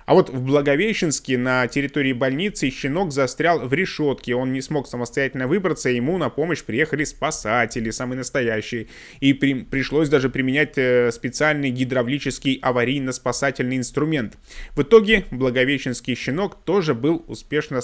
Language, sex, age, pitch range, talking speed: Russian, male, 20-39, 125-155 Hz, 130 wpm